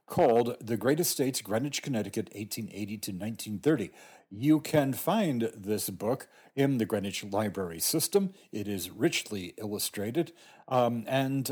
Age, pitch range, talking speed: 50-69, 105-135 Hz, 130 wpm